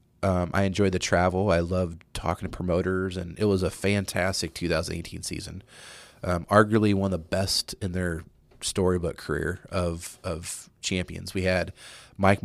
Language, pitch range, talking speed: English, 90-100 Hz, 160 wpm